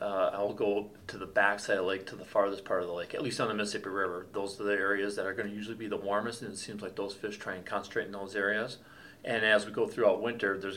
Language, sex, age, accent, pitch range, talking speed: English, male, 40-59, American, 105-125 Hz, 295 wpm